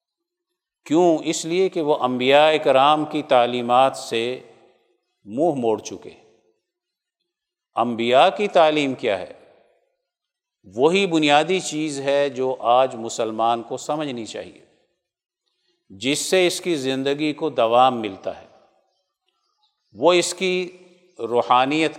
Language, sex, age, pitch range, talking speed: Urdu, male, 50-69, 125-165 Hz, 110 wpm